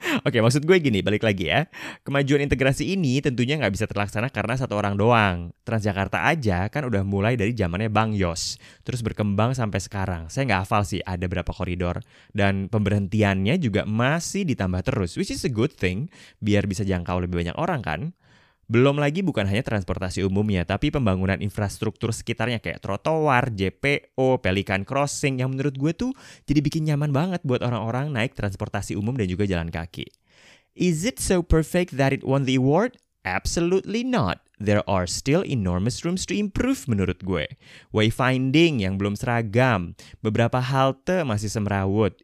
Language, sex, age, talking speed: Indonesian, male, 20-39, 165 wpm